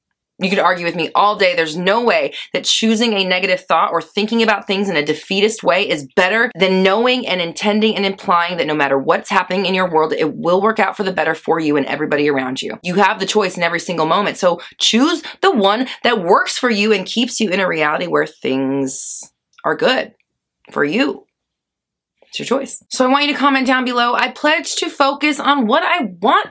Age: 20-39